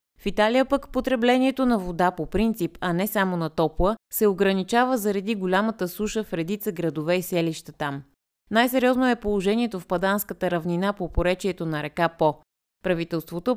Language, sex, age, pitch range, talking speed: Bulgarian, female, 20-39, 170-210 Hz, 160 wpm